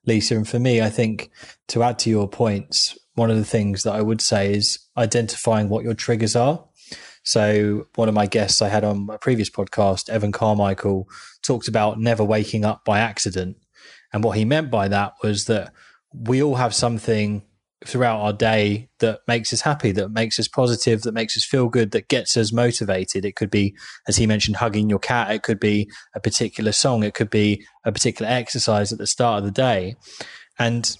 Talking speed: 205 wpm